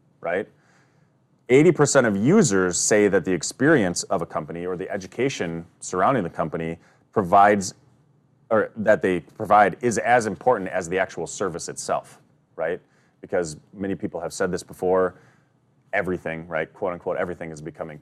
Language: English